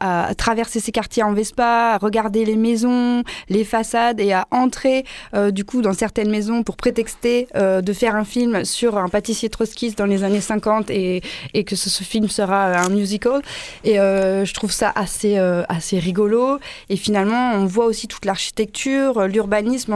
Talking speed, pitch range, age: 185 wpm, 195-230 Hz, 20-39